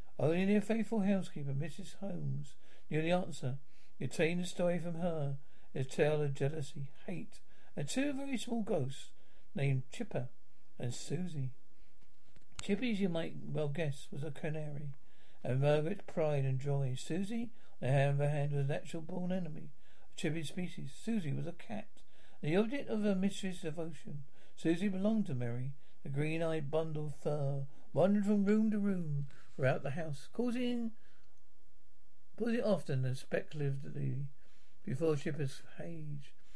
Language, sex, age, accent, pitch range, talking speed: English, male, 60-79, British, 145-190 Hz, 155 wpm